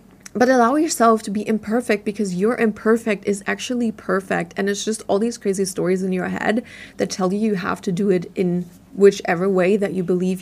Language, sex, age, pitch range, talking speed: English, female, 20-39, 190-225 Hz, 205 wpm